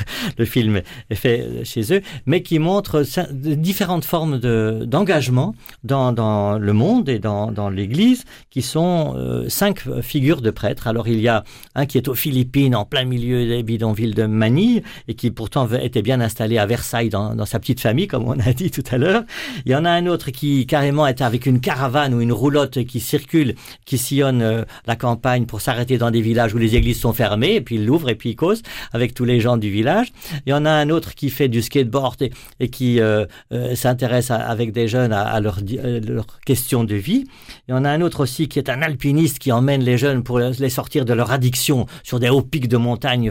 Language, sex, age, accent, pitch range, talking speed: French, male, 50-69, French, 115-140 Hz, 225 wpm